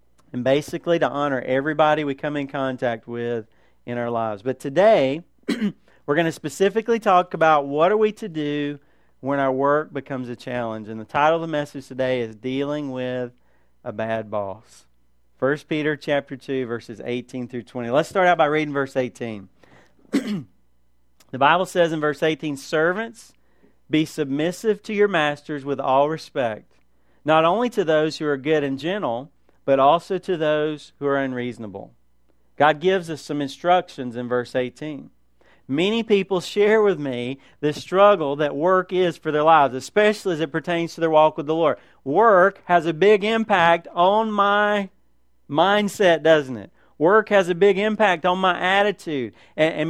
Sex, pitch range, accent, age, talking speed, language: male, 130-185 Hz, American, 40-59, 170 wpm, English